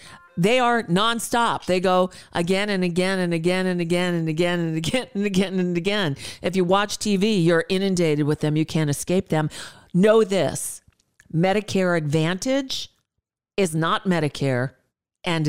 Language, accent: English, American